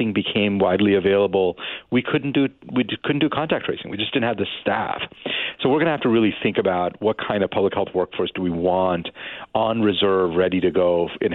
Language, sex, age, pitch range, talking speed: English, male, 40-59, 95-125 Hz, 215 wpm